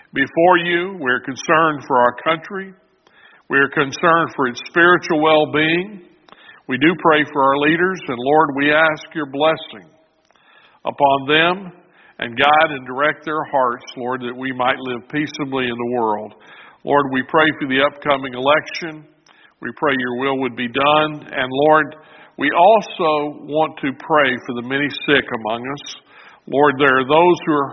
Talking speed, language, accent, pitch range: 165 wpm, English, American, 130-160 Hz